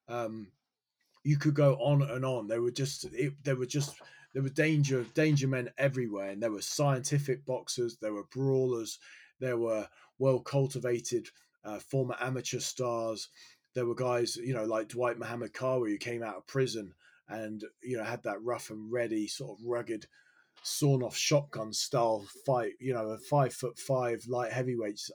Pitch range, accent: 115-145 Hz, British